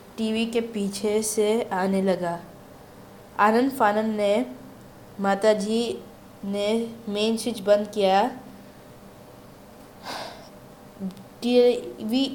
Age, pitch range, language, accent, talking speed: 20-39, 200-230 Hz, Hindi, native, 80 wpm